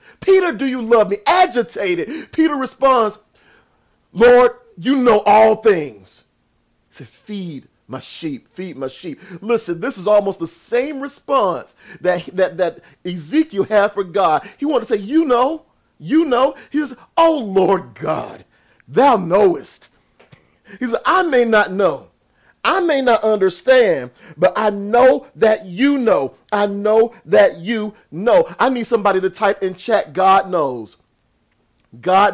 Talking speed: 150 wpm